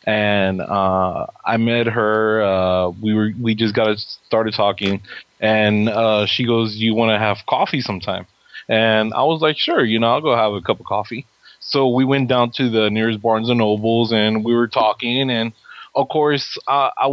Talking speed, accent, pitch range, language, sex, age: 195 wpm, American, 105-120 Hz, English, male, 20-39